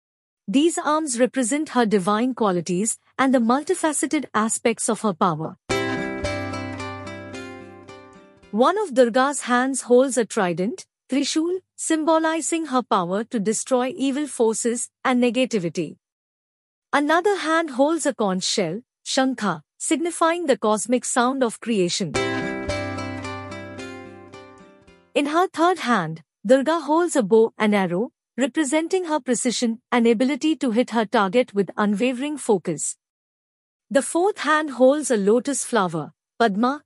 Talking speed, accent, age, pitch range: 120 wpm, Indian, 50-69, 195-285 Hz